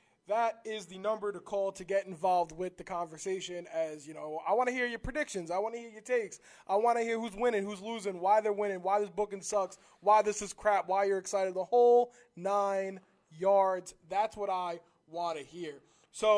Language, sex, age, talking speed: English, male, 20-39, 220 wpm